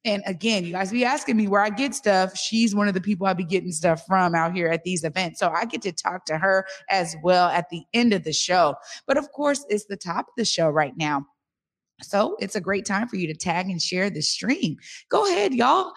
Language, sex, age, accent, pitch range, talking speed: English, female, 30-49, American, 165-220 Hz, 255 wpm